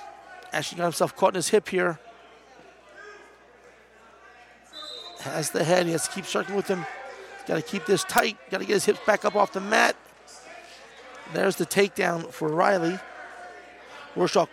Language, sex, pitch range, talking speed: English, male, 170-210 Hz, 160 wpm